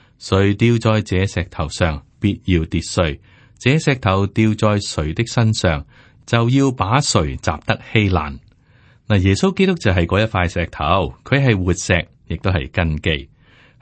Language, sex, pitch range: Chinese, male, 85-115 Hz